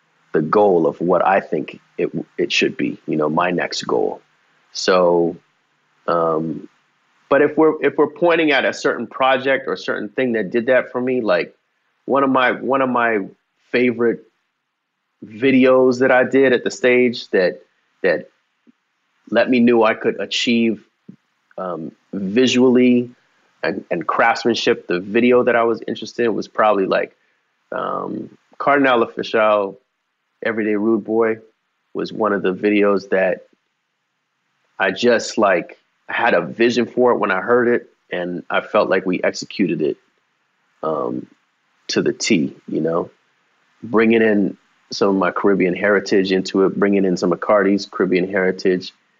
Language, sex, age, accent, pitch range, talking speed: English, male, 30-49, American, 95-125 Hz, 155 wpm